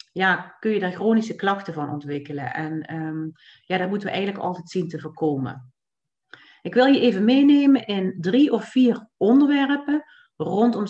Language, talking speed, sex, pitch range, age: Dutch, 165 wpm, female, 170-230 Hz, 40-59